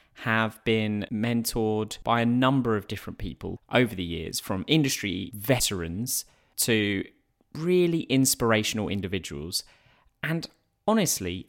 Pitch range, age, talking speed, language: 105-140 Hz, 20-39, 110 wpm, English